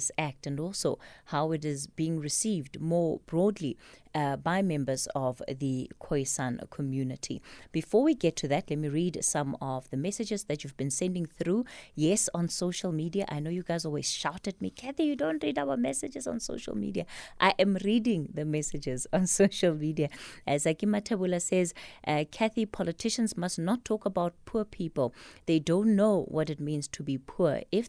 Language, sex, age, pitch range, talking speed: English, female, 20-39, 150-200 Hz, 185 wpm